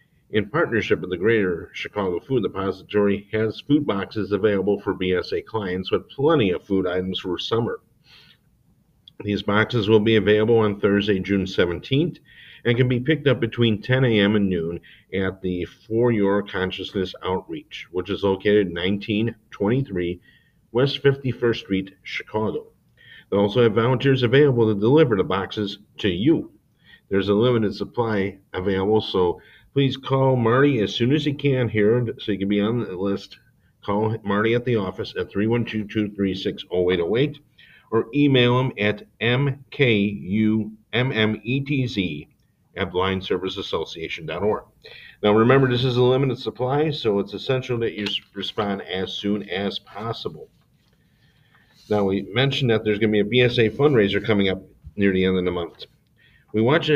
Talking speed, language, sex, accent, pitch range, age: 150 wpm, English, male, American, 100-125 Hz, 50-69